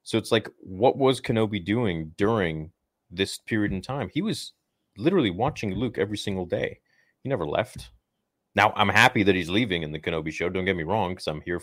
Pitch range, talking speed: 85-115 Hz, 205 wpm